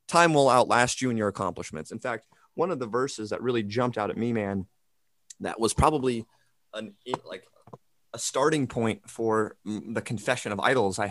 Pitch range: 105-135 Hz